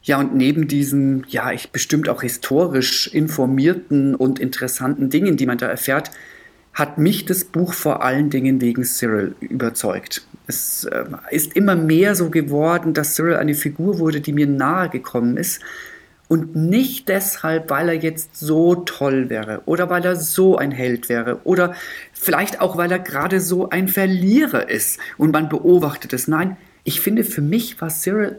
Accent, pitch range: German, 145-185 Hz